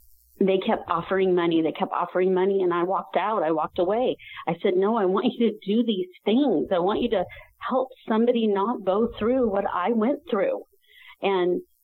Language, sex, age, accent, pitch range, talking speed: English, female, 40-59, American, 175-225 Hz, 200 wpm